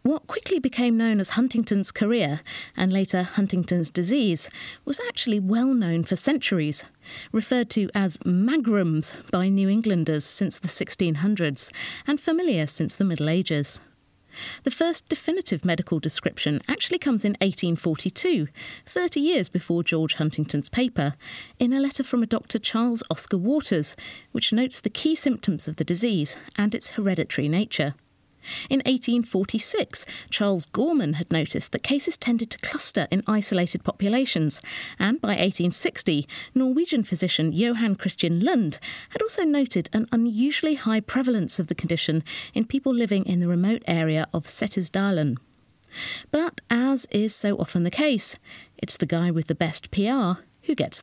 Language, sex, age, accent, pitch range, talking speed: English, female, 40-59, British, 170-250 Hz, 150 wpm